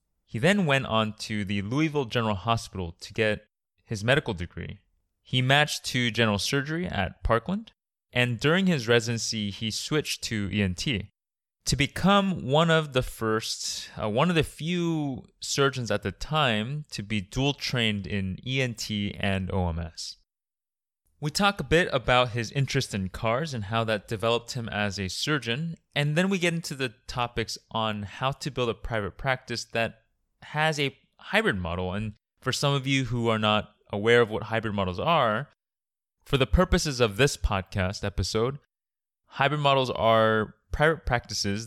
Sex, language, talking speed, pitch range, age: male, English, 165 wpm, 100-140 Hz, 20-39